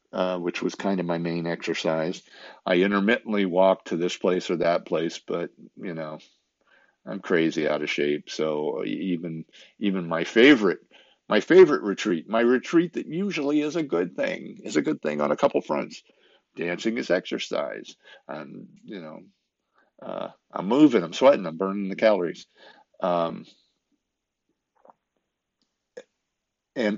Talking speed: 145 wpm